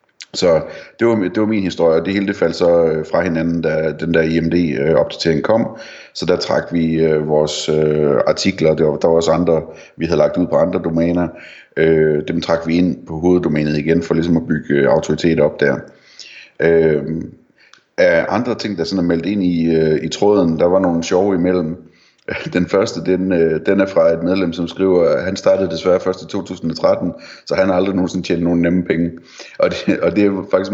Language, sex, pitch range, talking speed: Danish, male, 80-90 Hz, 195 wpm